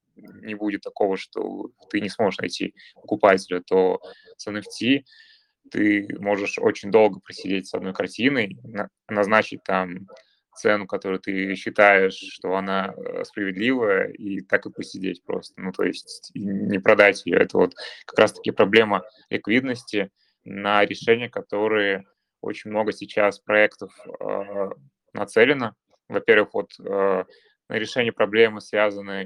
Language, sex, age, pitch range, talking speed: Russian, male, 20-39, 100-145 Hz, 125 wpm